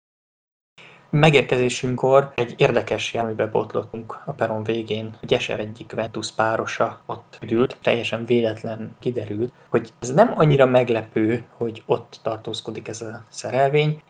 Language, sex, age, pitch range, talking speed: Hungarian, male, 20-39, 110-125 Hz, 125 wpm